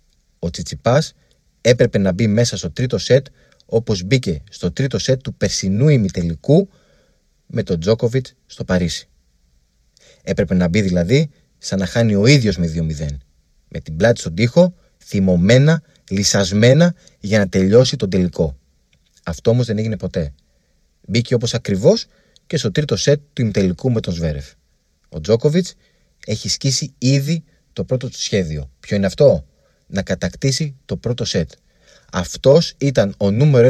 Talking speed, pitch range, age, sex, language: 150 wpm, 95-145 Hz, 30-49, male, Greek